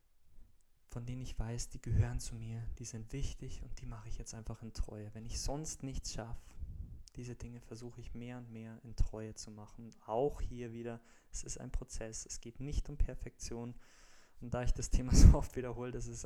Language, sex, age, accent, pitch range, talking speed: German, male, 20-39, German, 110-125 Hz, 210 wpm